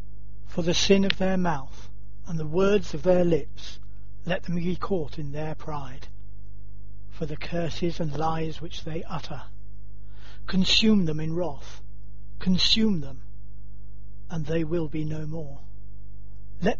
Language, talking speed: English, 145 wpm